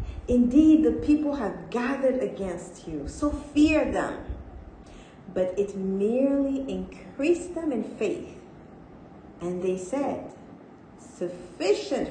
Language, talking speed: English, 105 wpm